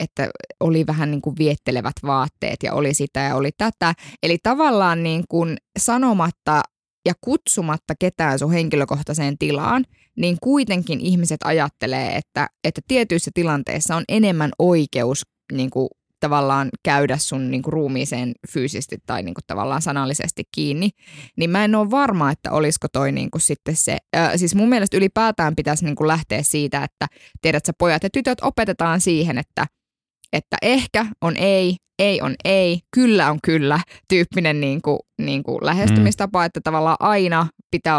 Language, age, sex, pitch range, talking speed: Finnish, 20-39, female, 145-195 Hz, 155 wpm